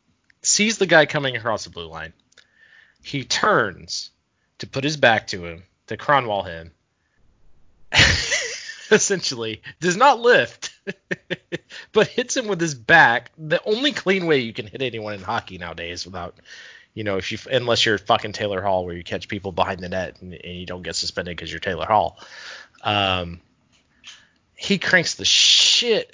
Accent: American